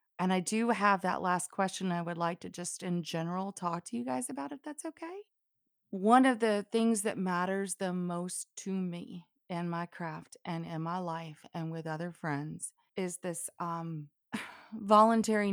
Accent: American